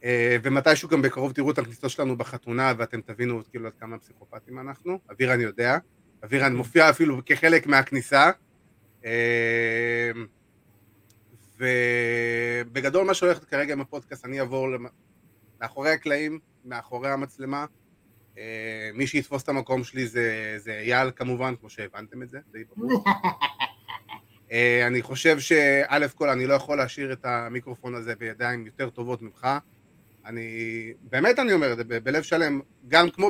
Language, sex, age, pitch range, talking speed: Hebrew, male, 30-49, 120-150 Hz, 145 wpm